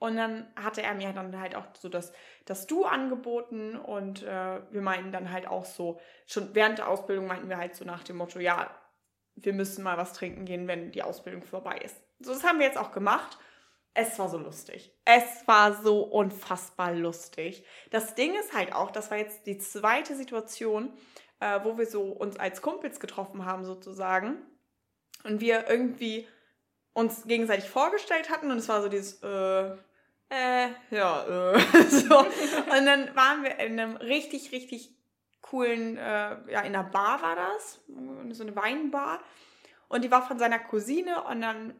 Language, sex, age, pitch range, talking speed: German, female, 20-39, 195-265 Hz, 180 wpm